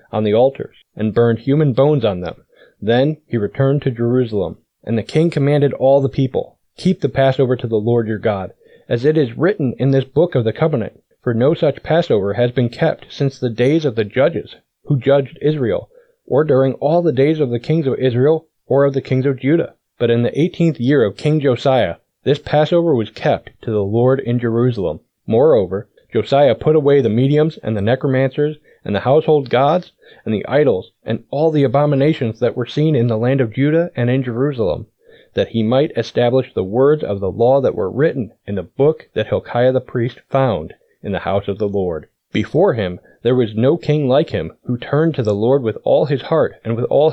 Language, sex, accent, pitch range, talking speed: English, male, American, 120-150 Hz, 210 wpm